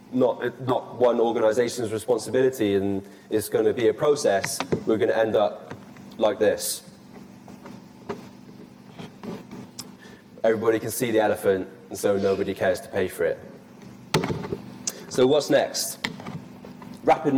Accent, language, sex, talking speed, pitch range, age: British, English, male, 125 wpm, 110-135 Hz, 20-39